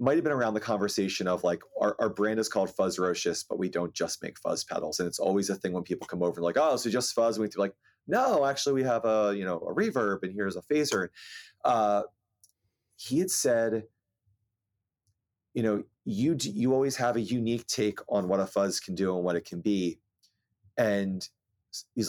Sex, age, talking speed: male, 30-49, 215 wpm